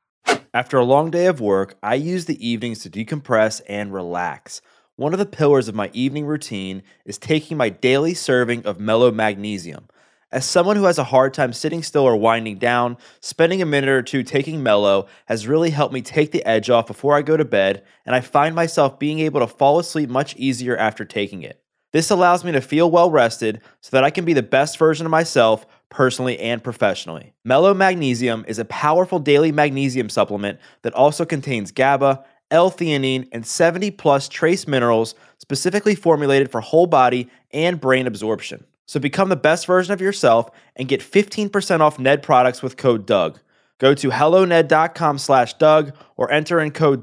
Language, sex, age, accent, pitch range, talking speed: English, male, 20-39, American, 120-155 Hz, 185 wpm